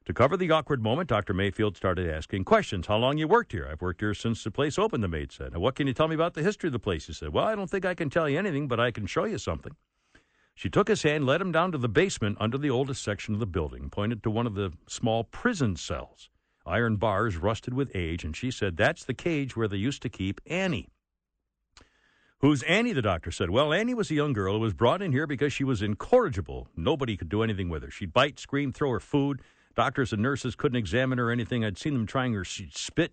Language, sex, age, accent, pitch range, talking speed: English, male, 60-79, American, 100-140 Hz, 255 wpm